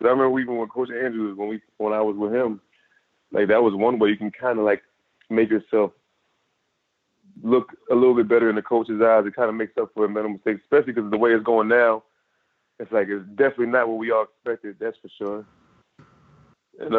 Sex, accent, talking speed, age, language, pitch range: male, American, 225 wpm, 20-39, English, 105-125 Hz